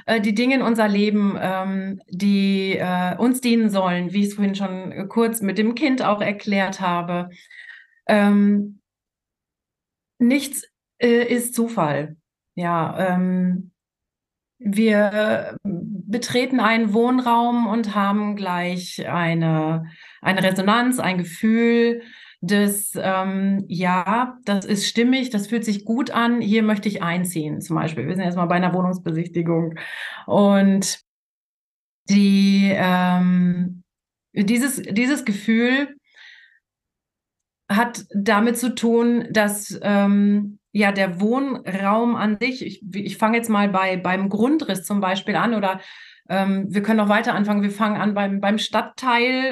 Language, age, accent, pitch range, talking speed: German, 30-49, German, 190-230 Hz, 120 wpm